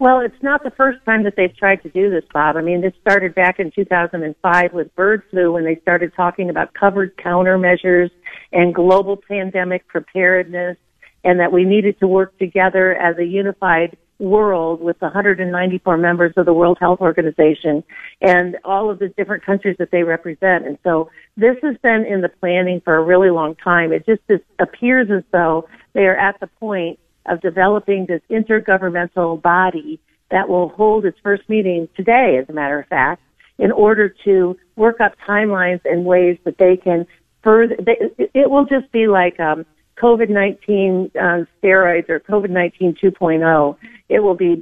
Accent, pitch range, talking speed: American, 175-205 Hz, 175 wpm